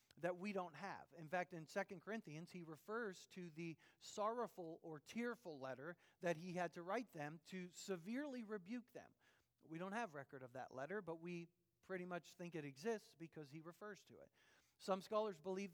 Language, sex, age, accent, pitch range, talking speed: English, male, 40-59, American, 155-210 Hz, 185 wpm